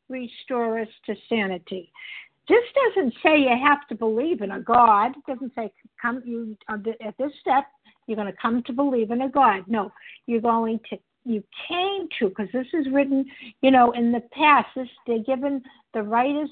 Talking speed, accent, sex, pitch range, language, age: 190 wpm, American, female, 225-295 Hz, English, 60-79